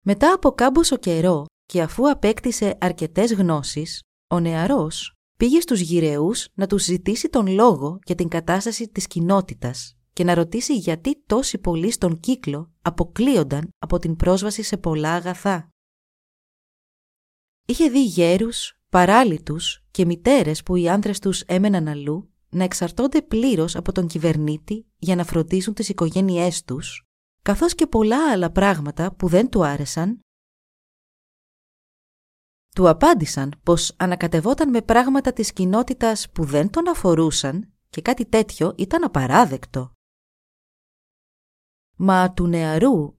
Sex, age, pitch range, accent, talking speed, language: female, 30-49, 165-210 Hz, native, 130 wpm, Greek